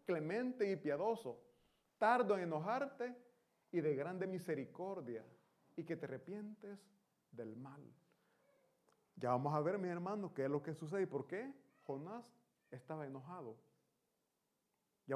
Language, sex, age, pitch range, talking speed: Italian, male, 40-59, 140-195 Hz, 135 wpm